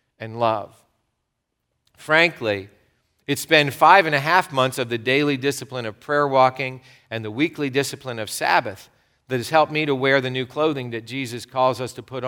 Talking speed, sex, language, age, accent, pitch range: 185 wpm, male, English, 40-59, American, 120-150 Hz